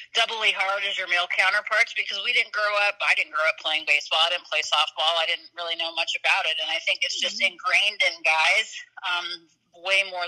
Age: 30-49